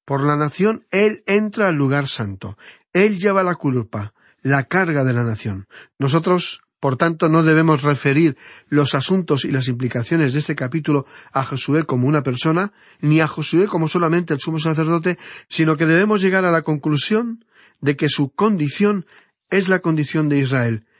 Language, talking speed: Spanish, 170 wpm